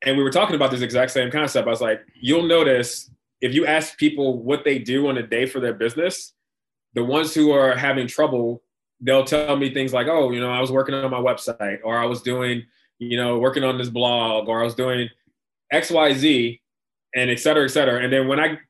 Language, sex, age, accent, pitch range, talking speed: English, male, 20-39, American, 120-140 Hz, 235 wpm